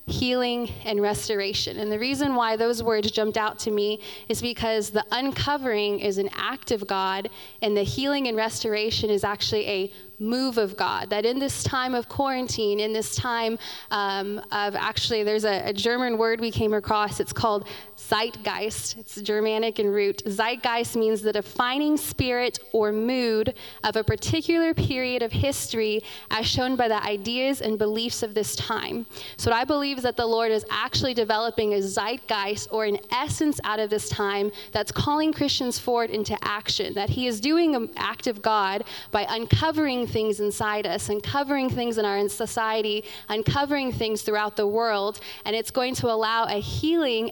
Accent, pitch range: American, 210-240 Hz